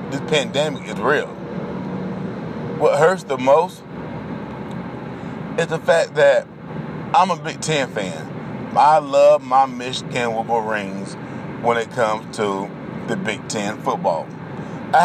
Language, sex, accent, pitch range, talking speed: English, male, American, 135-185 Hz, 130 wpm